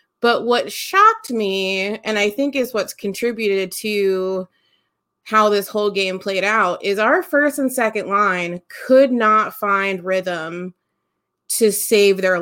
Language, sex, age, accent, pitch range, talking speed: English, female, 20-39, American, 185-240 Hz, 145 wpm